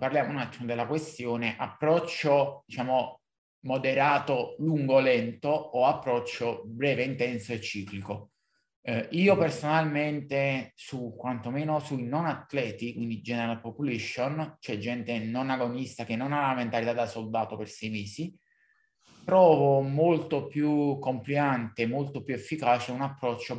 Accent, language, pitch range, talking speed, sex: native, Italian, 120-150 Hz, 125 wpm, male